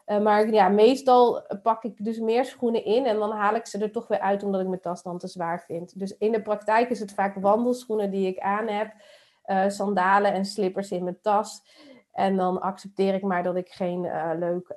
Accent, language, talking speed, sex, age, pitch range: Dutch, Dutch, 230 wpm, female, 30-49, 185-225 Hz